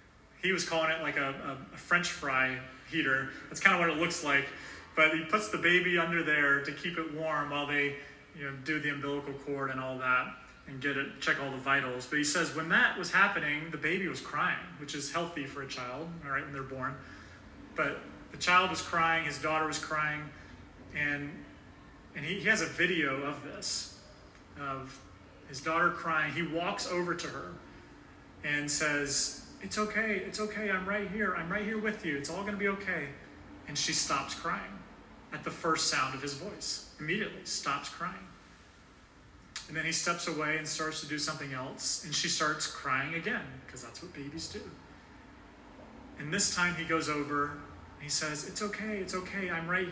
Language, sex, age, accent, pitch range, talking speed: English, male, 30-49, American, 140-170 Hz, 200 wpm